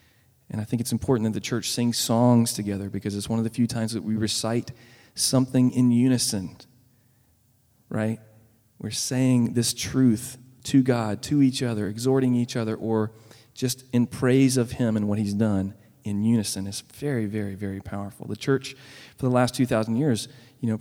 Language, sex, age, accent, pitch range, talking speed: English, male, 40-59, American, 105-125 Hz, 180 wpm